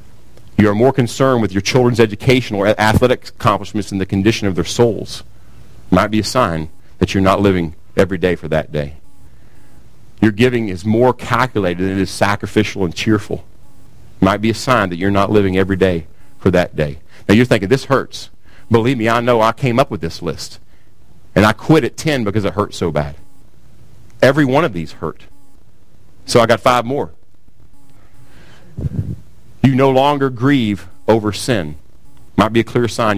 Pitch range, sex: 95-115 Hz, male